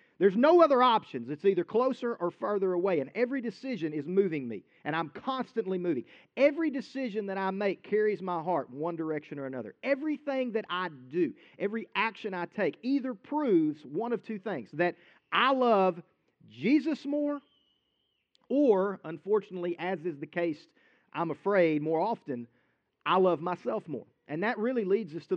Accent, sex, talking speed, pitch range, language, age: American, male, 170 wpm, 160-235 Hz, English, 40-59